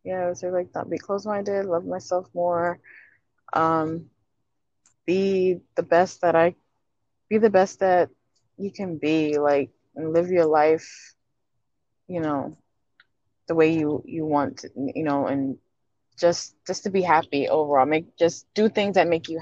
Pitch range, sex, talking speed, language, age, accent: 145-175 Hz, female, 165 wpm, English, 20-39, American